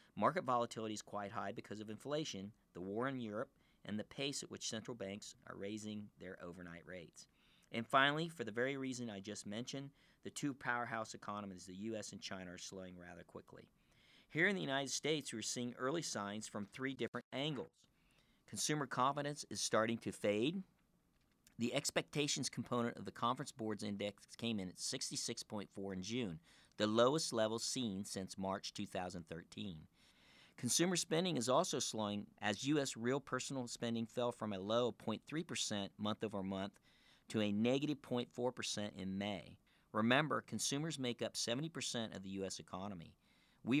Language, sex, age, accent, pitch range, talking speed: English, male, 50-69, American, 105-130 Hz, 165 wpm